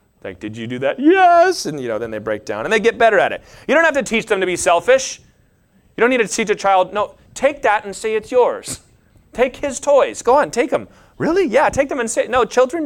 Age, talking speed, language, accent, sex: 30-49, 270 wpm, English, American, male